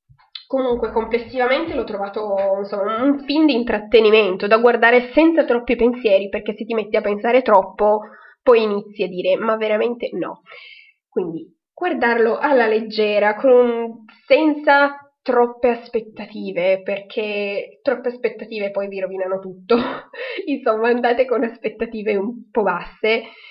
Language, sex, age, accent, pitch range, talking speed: Italian, female, 20-39, native, 195-250 Hz, 125 wpm